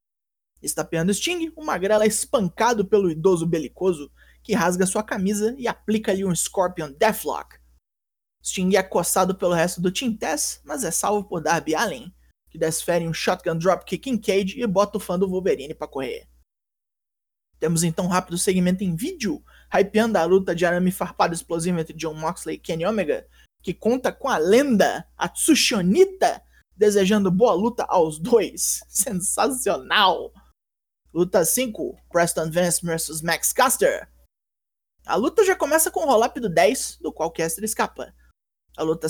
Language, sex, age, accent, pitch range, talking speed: Portuguese, male, 20-39, Brazilian, 175-225 Hz, 160 wpm